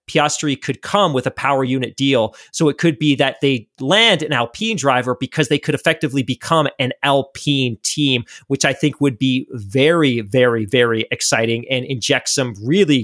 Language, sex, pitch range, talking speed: English, male, 125-145 Hz, 180 wpm